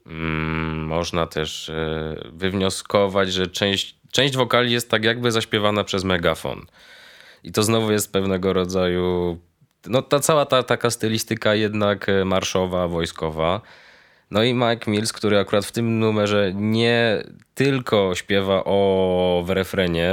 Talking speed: 120 wpm